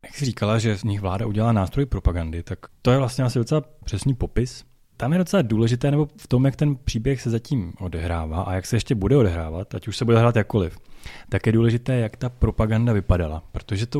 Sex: male